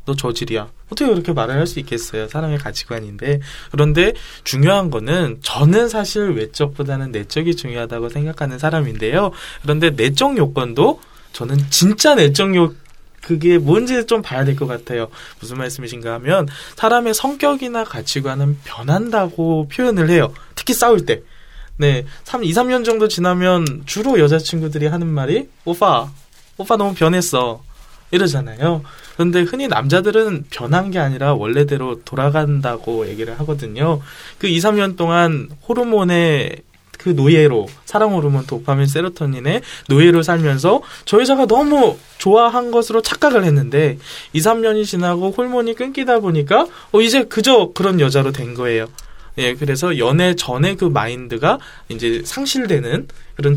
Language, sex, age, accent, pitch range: Korean, male, 20-39, native, 140-190 Hz